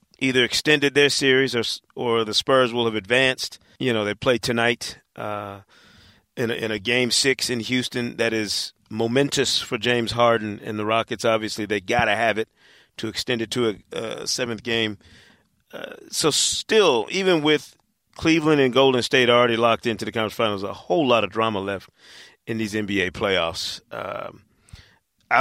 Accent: American